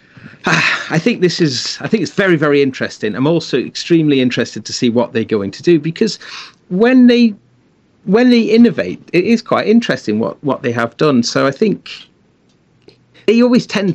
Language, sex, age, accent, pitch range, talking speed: English, male, 40-59, British, 120-175 Hz, 180 wpm